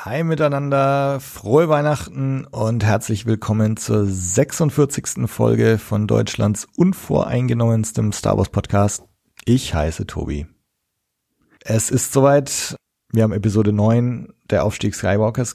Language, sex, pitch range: German, male, 105-130 Hz